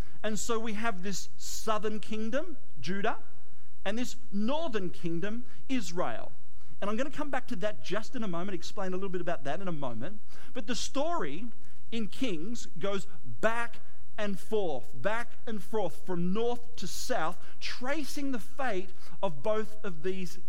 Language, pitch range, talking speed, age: English, 170-240 Hz, 165 wpm, 40-59